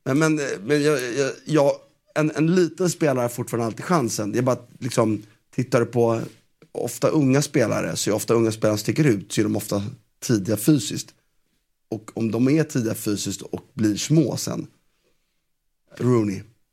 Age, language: 30-49, Swedish